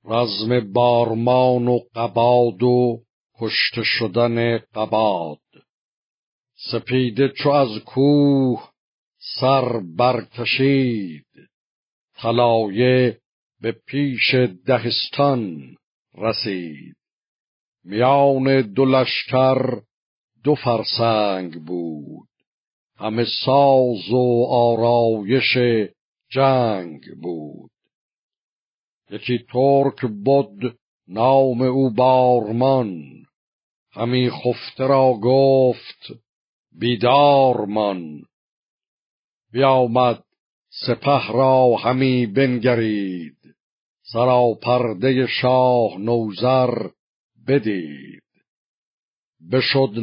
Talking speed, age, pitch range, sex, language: 65 wpm, 60-79, 115-130 Hz, male, Persian